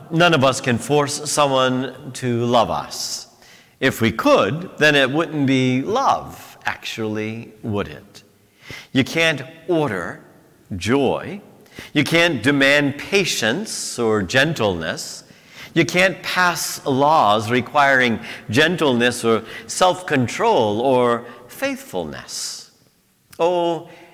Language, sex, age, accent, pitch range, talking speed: English, male, 50-69, American, 115-165 Hz, 100 wpm